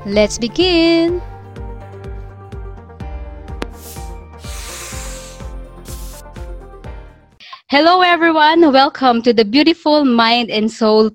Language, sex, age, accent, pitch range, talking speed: English, female, 20-39, Filipino, 205-260 Hz, 60 wpm